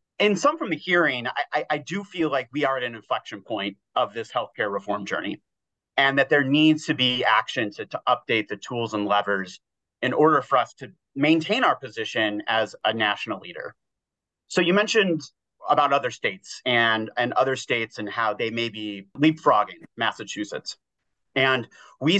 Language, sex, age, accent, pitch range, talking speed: English, male, 30-49, American, 110-150 Hz, 180 wpm